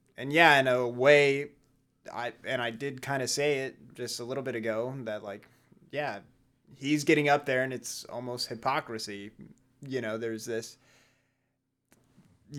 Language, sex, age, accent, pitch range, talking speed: English, male, 20-39, American, 115-140 Hz, 165 wpm